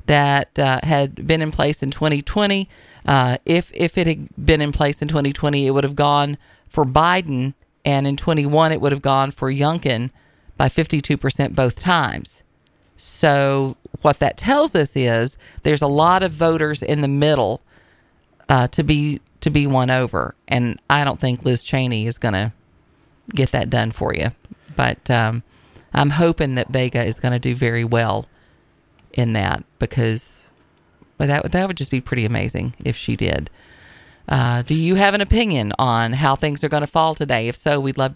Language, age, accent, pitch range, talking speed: English, 40-59, American, 125-155 Hz, 180 wpm